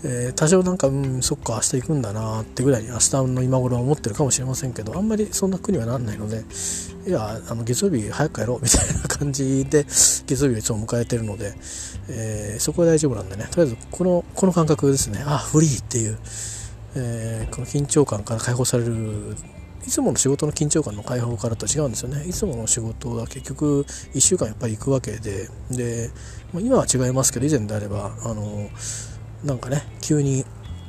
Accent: native